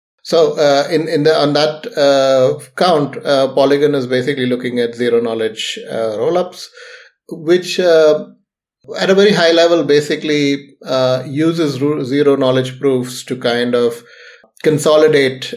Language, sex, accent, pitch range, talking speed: English, male, Indian, 120-150 Hz, 140 wpm